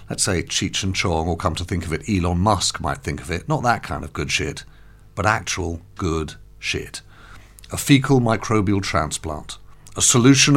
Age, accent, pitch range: 50-69, British, 85-110 Hz